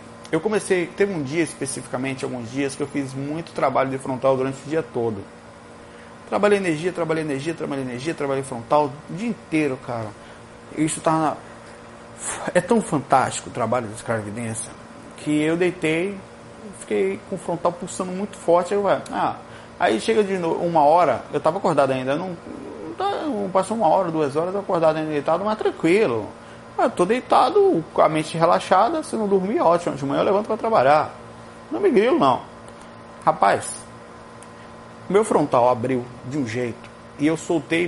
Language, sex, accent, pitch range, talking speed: Portuguese, male, Brazilian, 135-195 Hz, 175 wpm